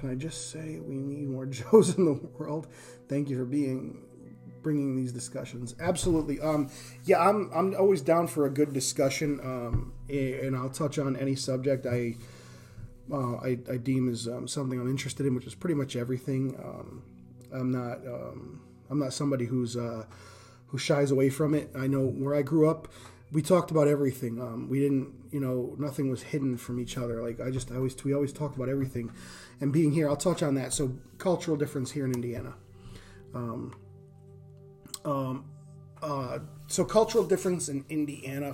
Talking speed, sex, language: 185 wpm, male, English